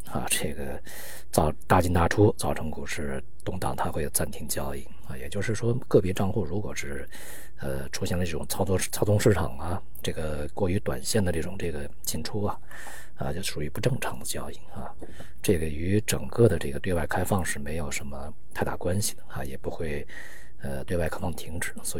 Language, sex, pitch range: Chinese, male, 70-100 Hz